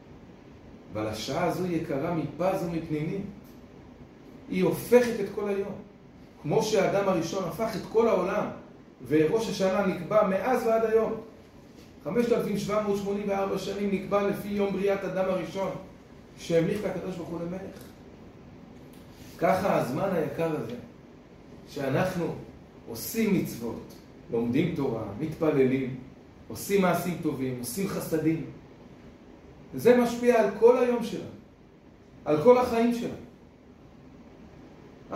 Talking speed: 105 wpm